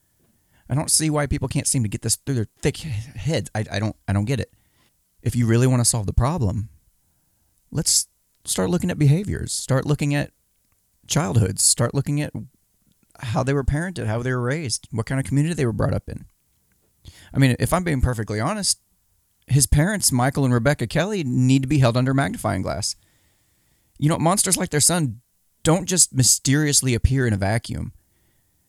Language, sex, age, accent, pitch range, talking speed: English, male, 30-49, American, 110-140 Hz, 190 wpm